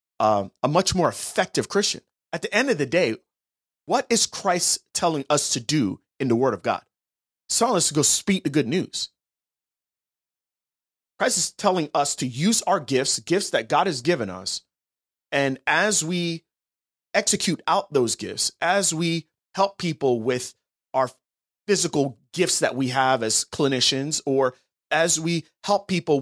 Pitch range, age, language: 130-195 Hz, 30-49, English